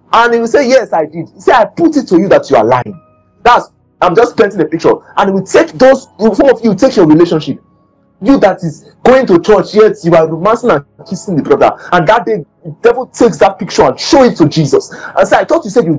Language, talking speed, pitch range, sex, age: English, 265 wpm, 160-230 Hz, male, 30-49